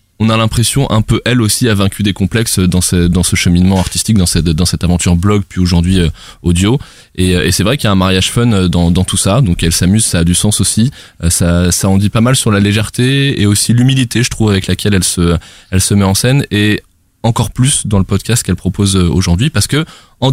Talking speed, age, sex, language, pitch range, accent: 245 wpm, 20-39, male, French, 95-115 Hz, French